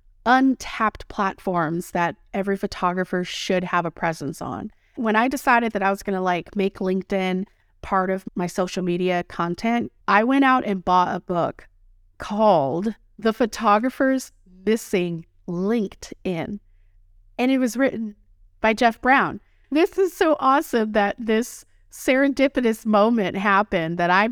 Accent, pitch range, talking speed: American, 180-245 Hz, 140 wpm